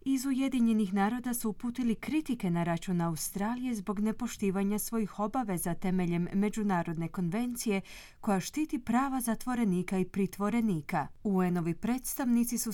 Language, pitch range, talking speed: Croatian, 180-240 Hz, 120 wpm